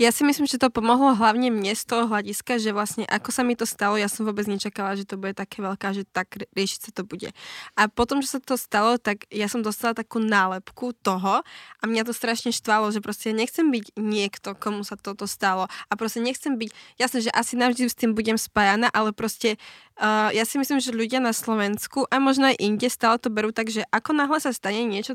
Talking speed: 230 wpm